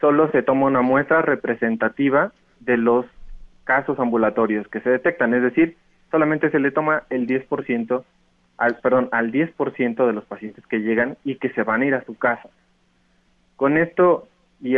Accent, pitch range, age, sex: Mexican, 120-145 Hz, 30-49, male